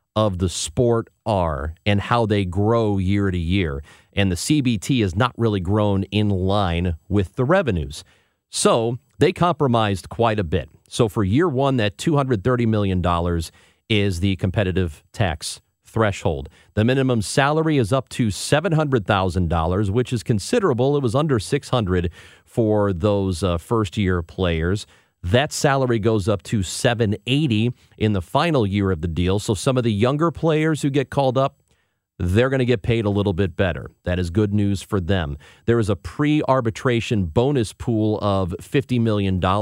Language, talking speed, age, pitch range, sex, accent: English, 175 wpm, 40-59, 95-120 Hz, male, American